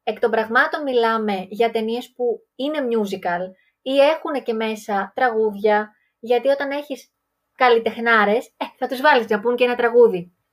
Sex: female